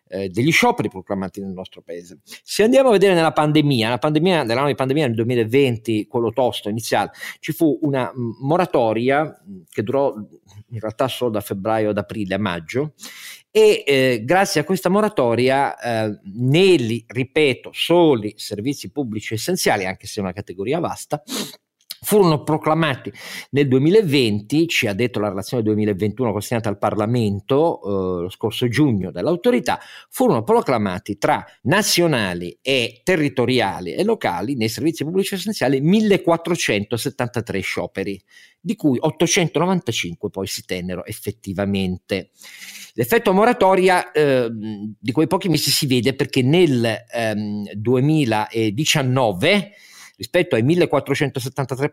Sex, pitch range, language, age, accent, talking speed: male, 105-160 Hz, Italian, 50-69, native, 130 wpm